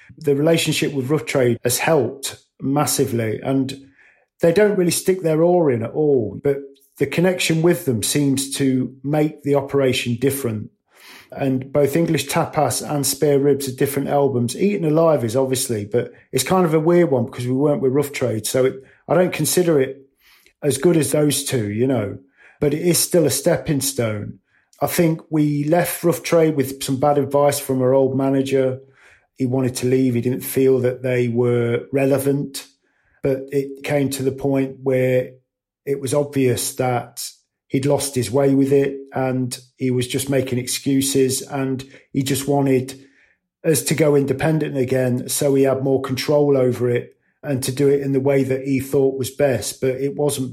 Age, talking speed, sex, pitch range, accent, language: 50-69, 185 wpm, male, 130-145 Hz, British, English